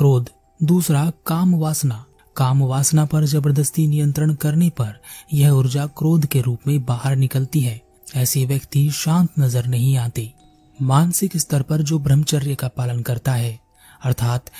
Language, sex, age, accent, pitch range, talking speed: Hindi, male, 30-49, native, 130-155 Hz, 150 wpm